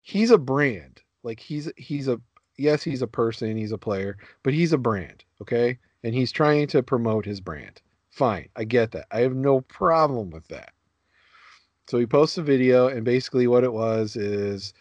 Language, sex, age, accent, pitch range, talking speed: English, male, 40-59, American, 95-125 Hz, 190 wpm